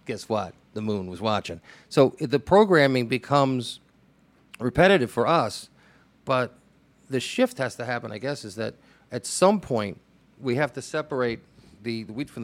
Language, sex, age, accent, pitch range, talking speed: English, male, 40-59, American, 120-165 Hz, 160 wpm